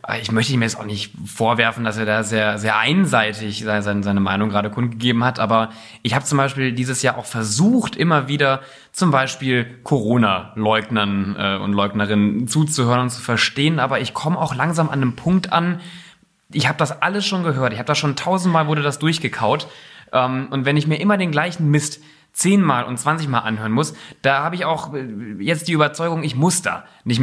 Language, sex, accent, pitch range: German, male, German, 115-165 Hz